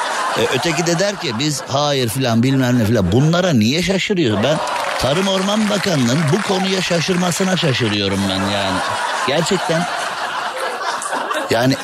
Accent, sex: native, male